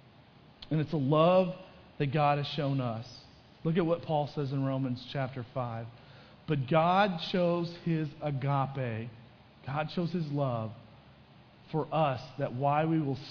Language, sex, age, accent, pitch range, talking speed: English, male, 40-59, American, 125-160 Hz, 145 wpm